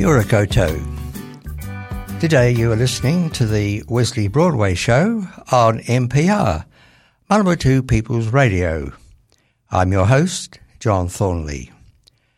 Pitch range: 100-135 Hz